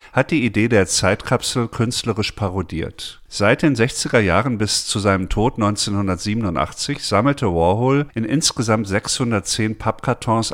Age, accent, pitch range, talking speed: 50-69, German, 95-115 Hz, 125 wpm